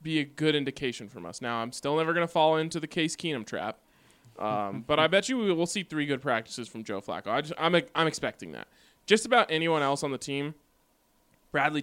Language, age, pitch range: English, 20-39, 120-155 Hz